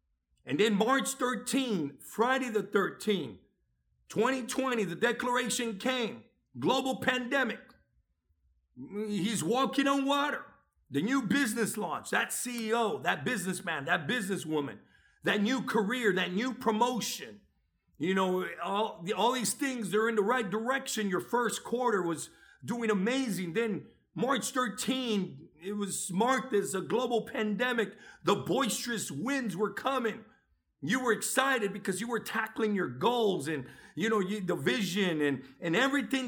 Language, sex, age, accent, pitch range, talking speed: English, male, 50-69, American, 180-240 Hz, 135 wpm